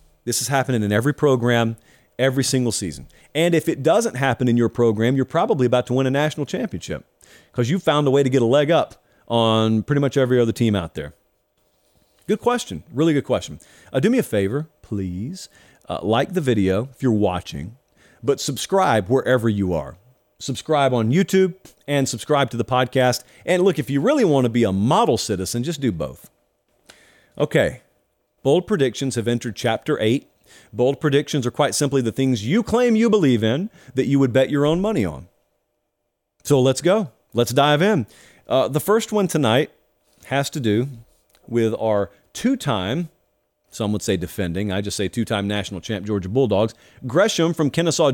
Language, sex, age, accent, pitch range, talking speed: English, male, 40-59, American, 110-150 Hz, 185 wpm